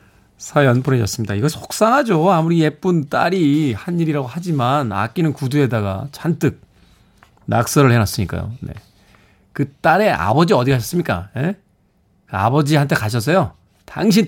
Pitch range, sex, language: 105-155 Hz, male, Korean